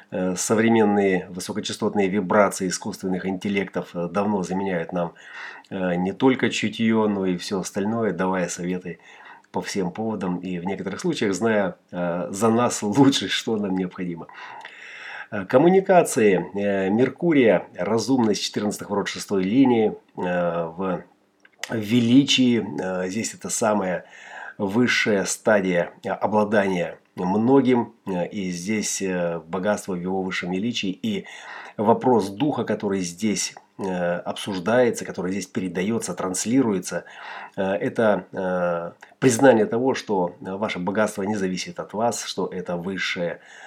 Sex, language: male, Russian